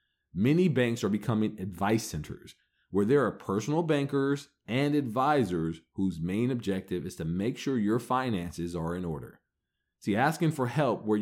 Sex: male